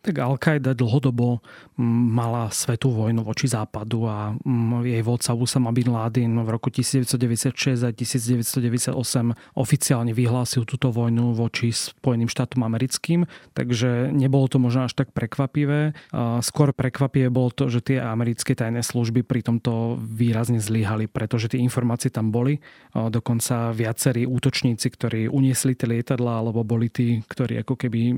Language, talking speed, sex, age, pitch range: Slovak, 140 wpm, male, 30-49, 115-130 Hz